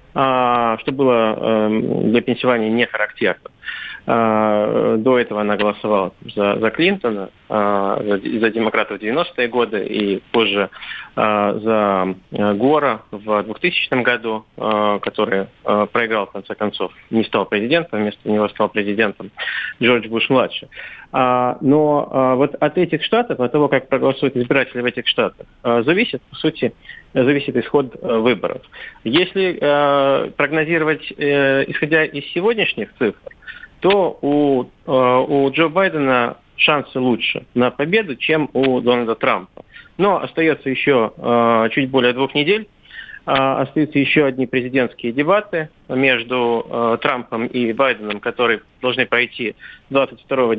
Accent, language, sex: native, Russian, male